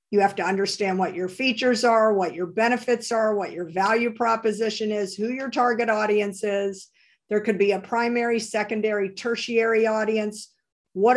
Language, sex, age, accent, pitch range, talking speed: English, female, 50-69, American, 195-225 Hz, 165 wpm